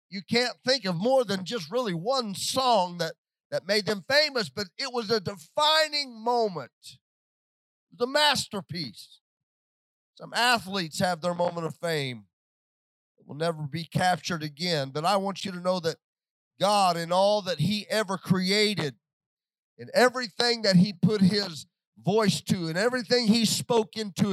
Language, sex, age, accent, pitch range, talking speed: English, male, 40-59, American, 170-245 Hz, 160 wpm